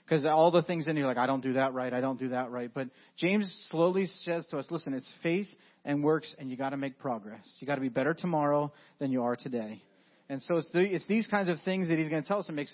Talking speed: 290 wpm